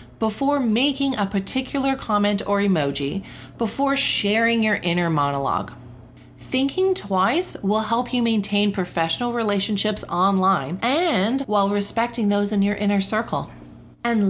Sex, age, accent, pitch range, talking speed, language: female, 40-59, American, 185-235 Hz, 125 wpm, English